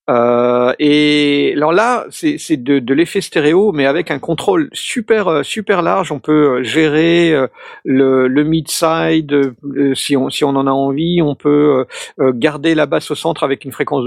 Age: 50-69